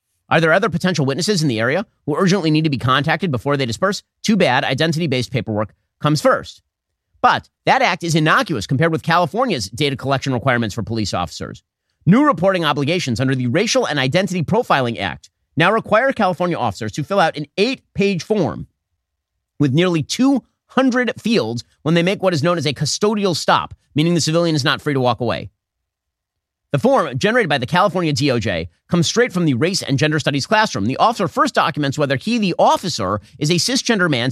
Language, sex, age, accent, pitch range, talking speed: English, male, 30-49, American, 130-190 Hz, 190 wpm